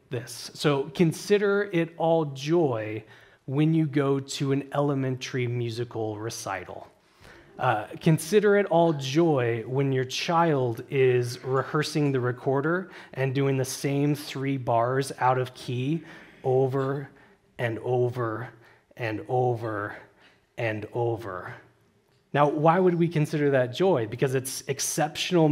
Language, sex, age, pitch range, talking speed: English, male, 30-49, 130-165 Hz, 120 wpm